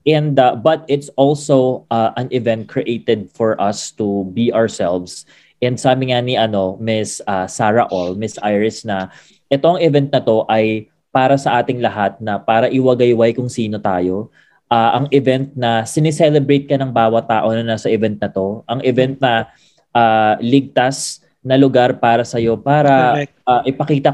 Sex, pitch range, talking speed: male, 115-135 Hz, 165 wpm